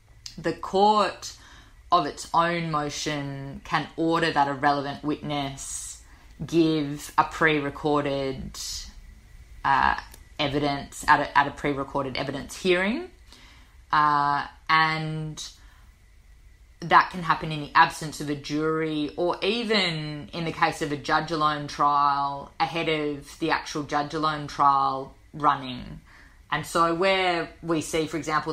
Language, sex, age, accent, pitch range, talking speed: English, female, 20-39, Australian, 140-160 Hz, 120 wpm